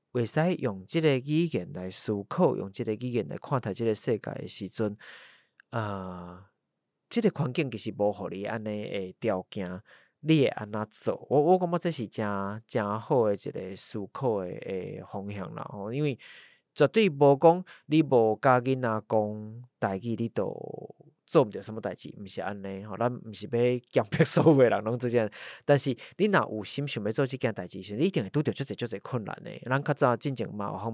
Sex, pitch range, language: male, 100-135 Hz, Chinese